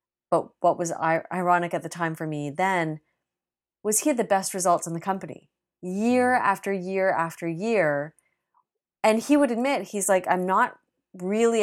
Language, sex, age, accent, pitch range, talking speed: English, female, 30-49, American, 155-195 Hz, 170 wpm